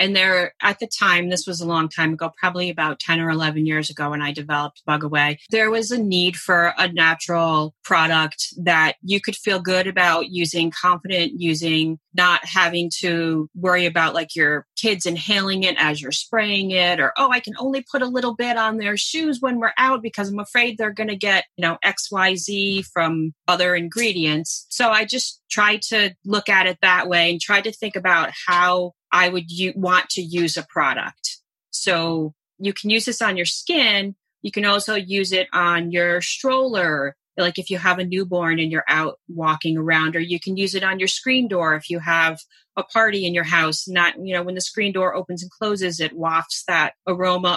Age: 30-49